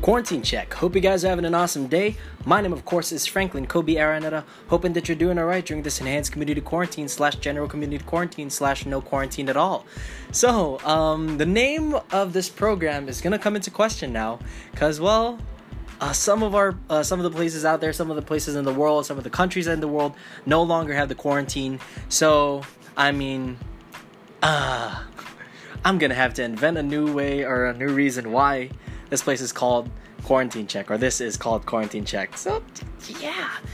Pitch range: 125-160 Hz